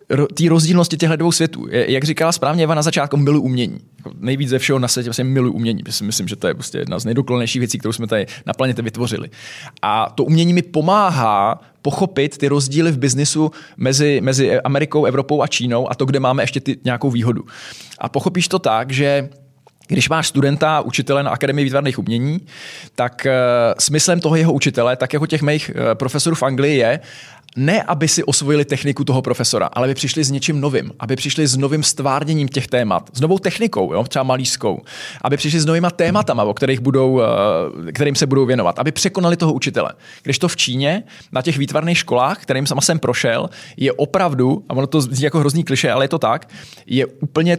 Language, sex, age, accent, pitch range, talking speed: Czech, male, 20-39, native, 130-155 Hz, 190 wpm